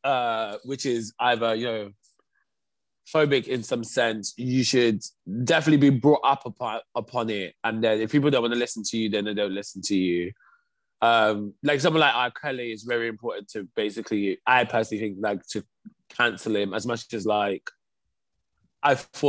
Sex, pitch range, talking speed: male, 110-150 Hz, 185 wpm